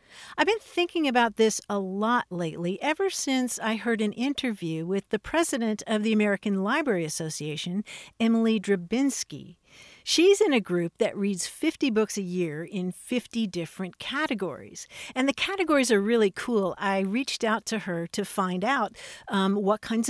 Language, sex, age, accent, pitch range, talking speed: English, female, 50-69, American, 200-265 Hz, 165 wpm